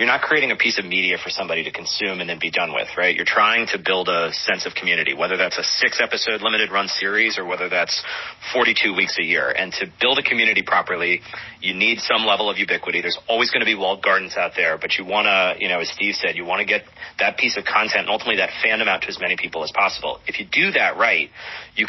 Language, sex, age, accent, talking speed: English, male, 30-49, American, 260 wpm